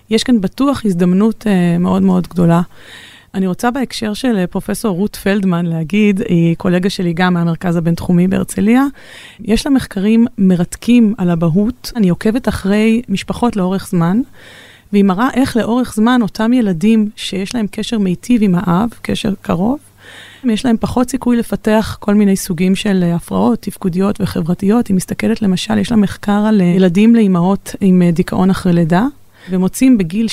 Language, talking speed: Hebrew, 150 wpm